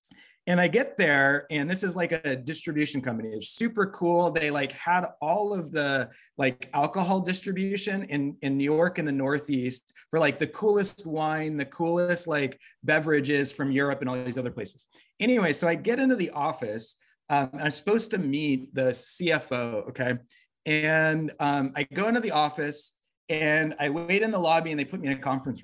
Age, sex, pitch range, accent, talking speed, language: 30-49, male, 140-190 Hz, American, 190 wpm, English